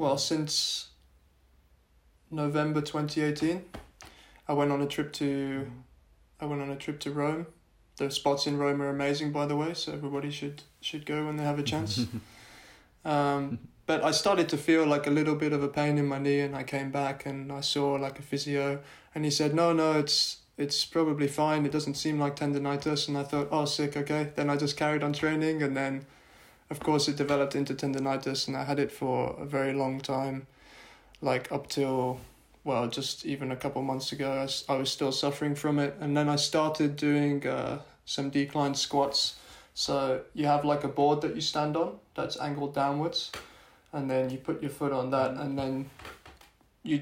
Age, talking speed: 20-39, 200 wpm